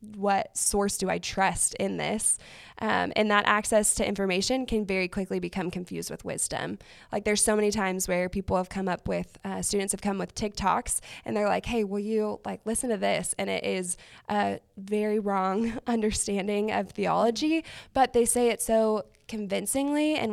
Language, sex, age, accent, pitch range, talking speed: English, female, 20-39, American, 190-220 Hz, 185 wpm